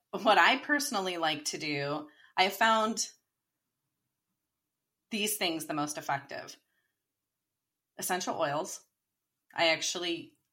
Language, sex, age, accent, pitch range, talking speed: English, female, 30-49, American, 150-175 Hz, 95 wpm